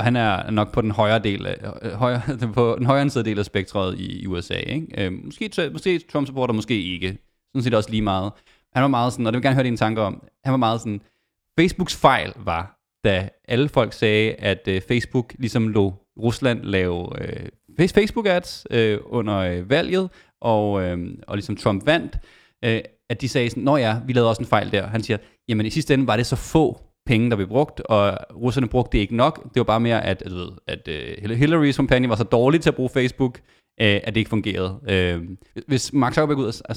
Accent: Danish